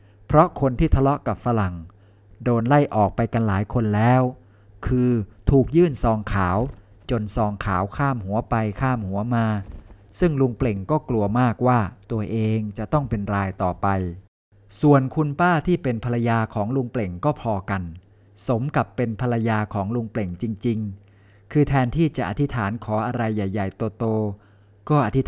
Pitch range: 100-130 Hz